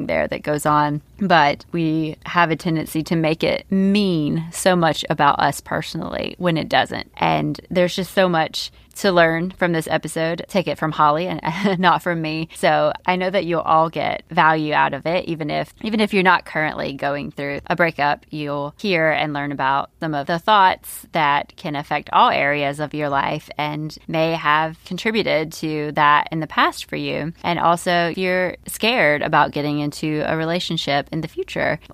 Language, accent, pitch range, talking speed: English, American, 150-185 Hz, 190 wpm